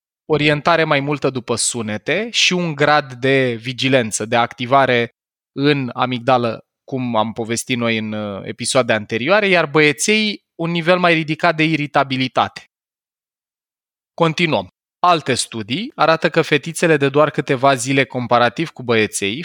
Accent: native